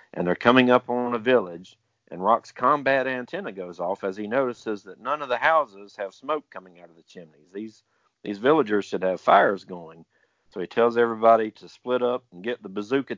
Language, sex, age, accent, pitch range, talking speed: English, male, 50-69, American, 100-120 Hz, 210 wpm